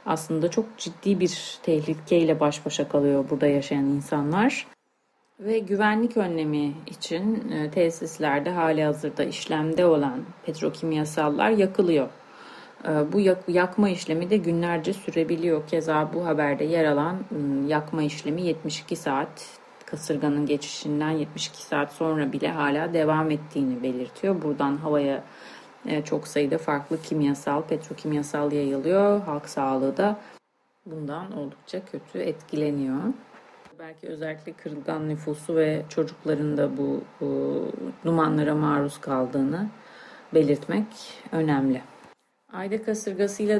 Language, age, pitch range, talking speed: Turkish, 30-49, 145-185 Hz, 105 wpm